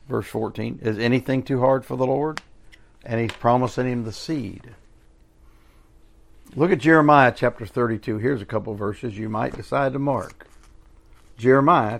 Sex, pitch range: male, 120-155 Hz